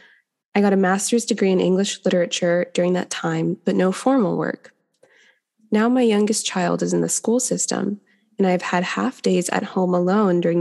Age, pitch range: 20-39, 180-225 Hz